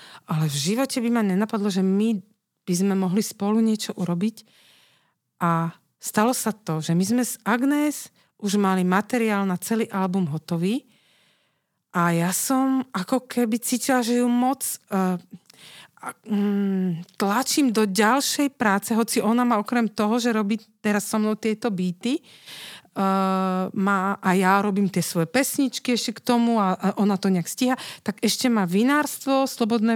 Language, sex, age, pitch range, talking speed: Slovak, female, 40-59, 190-240 Hz, 160 wpm